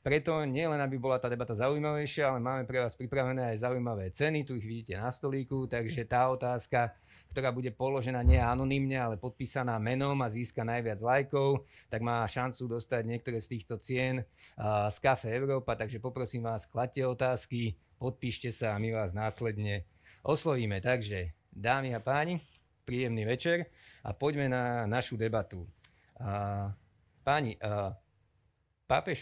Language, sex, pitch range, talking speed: Slovak, male, 110-130 Hz, 155 wpm